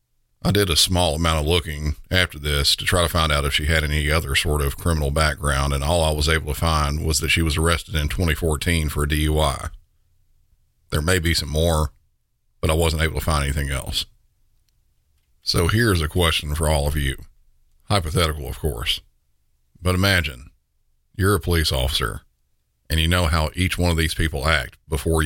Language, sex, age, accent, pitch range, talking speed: English, male, 50-69, American, 75-85 Hz, 190 wpm